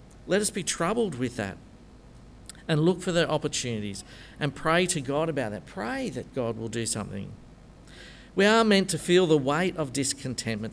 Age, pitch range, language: 50-69, 120-175 Hz, English